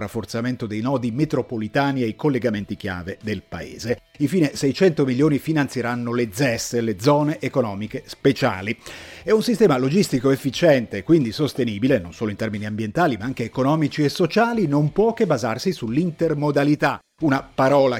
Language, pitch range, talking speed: Italian, 115-150 Hz, 150 wpm